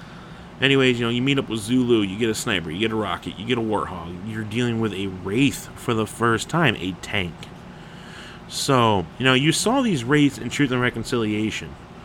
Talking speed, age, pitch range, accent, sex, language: 210 wpm, 30-49, 100-125 Hz, American, male, English